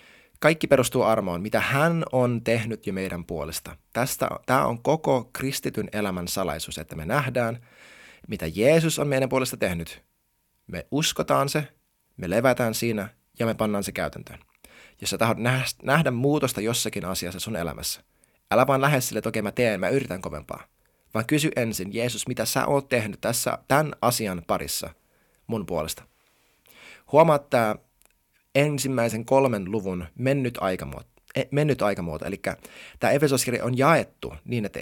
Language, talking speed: Finnish, 145 wpm